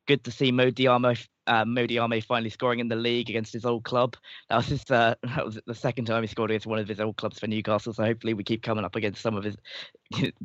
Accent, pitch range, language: British, 105-120 Hz, English